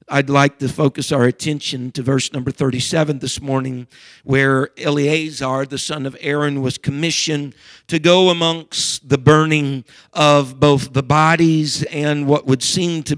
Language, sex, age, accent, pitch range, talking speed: English, male, 50-69, American, 135-165 Hz, 155 wpm